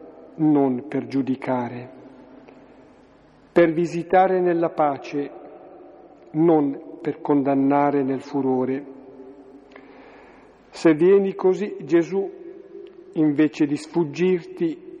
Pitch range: 150-185 Hz